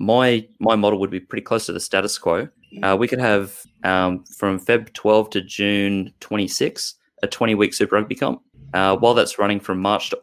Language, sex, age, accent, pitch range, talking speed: English, male, 20-39, Australian, 95-105 Hz, 200 wpm